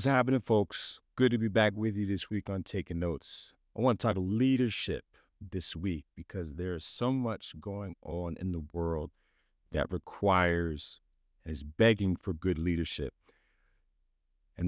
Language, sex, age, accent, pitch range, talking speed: English, male, 50-69, American, 80-110 Hz, 165 wpm